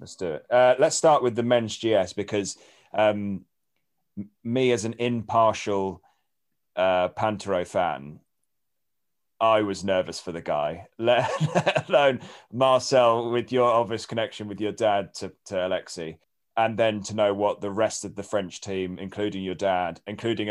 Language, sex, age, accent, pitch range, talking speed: English, male, 30-49, British, 95-115 Hz, 160 wpm